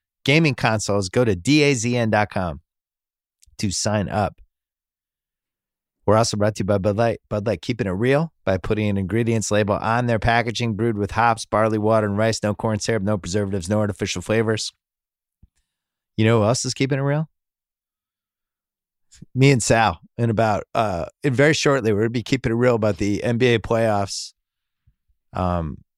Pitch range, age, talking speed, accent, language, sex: 95-125 Hz, 30-49, 165 wpm, American, English, male